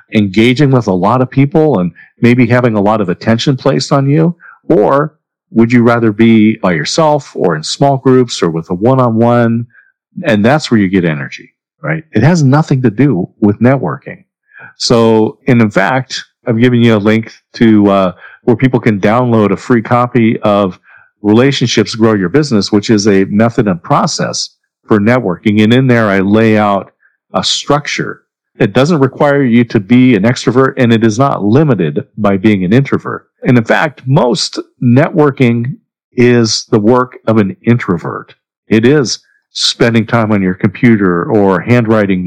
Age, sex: 50-69, male